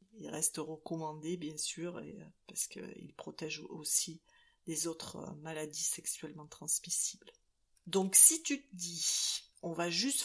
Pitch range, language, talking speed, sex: 155-205 Hz, French, 130 wpm, female